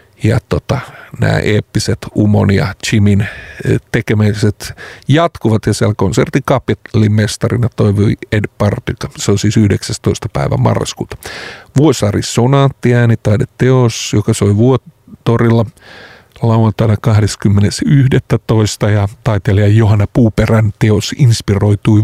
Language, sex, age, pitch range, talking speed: Finnish, male, 50-69, 110-135 Hz, 90 wpm